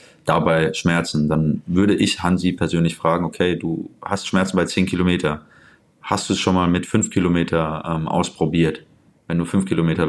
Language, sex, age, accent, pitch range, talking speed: German, male, 20-39, German, 80-95 Hz, 165 wpm